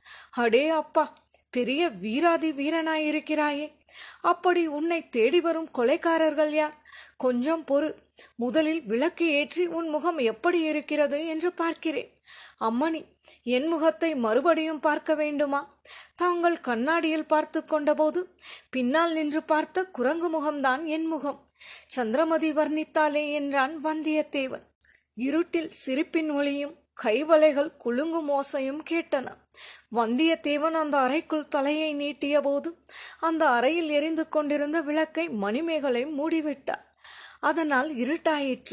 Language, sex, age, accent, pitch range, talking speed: Tamil, female, 20-39, native, 280-320 Hz, 95 wpm